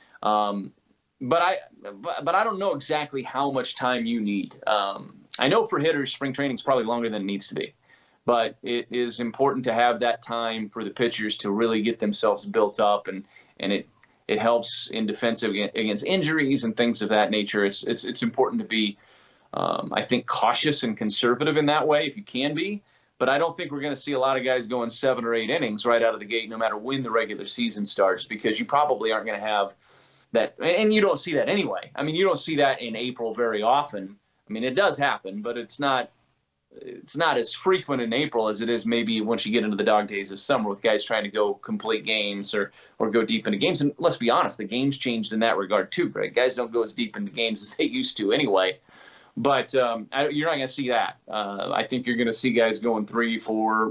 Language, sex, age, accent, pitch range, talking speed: English, male, 30-49, American, 110-135 Hz, 240 wpm